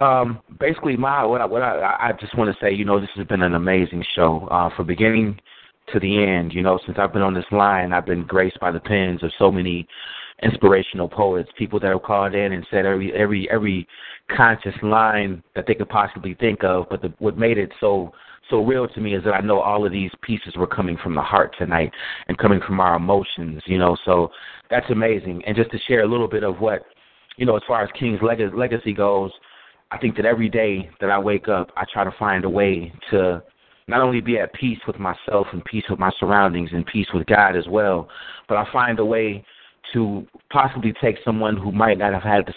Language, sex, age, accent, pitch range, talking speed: English, male, 30-49, American, 95-110 Hz, 230 wpm